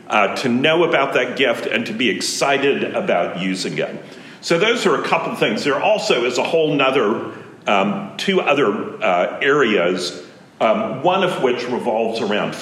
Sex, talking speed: male, 175 wpm